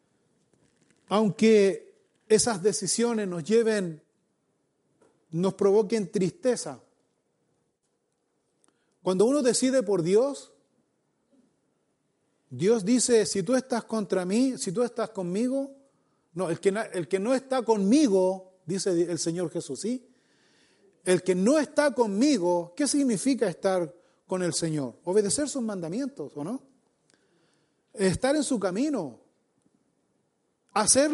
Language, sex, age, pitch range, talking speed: Spanish, male, 40-59, 185-250 Hz, 110 wpm